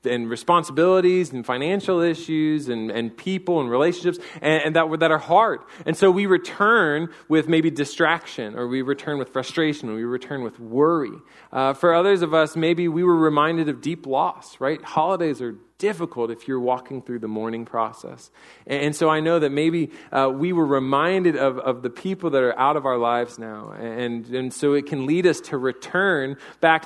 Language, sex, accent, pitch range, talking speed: English, male, American, 130-165 Hz, 200 wpm